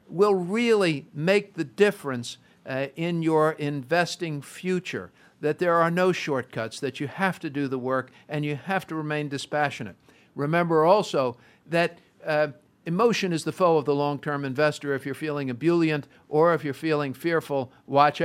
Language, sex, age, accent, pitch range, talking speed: English, male, 50-69, American, 145-175 Hz, 165 wpm